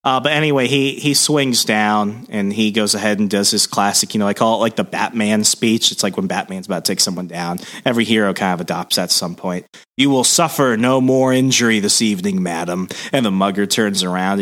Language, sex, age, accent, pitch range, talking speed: English, male, 30-49, American, 105-145 Hz, 230 wpm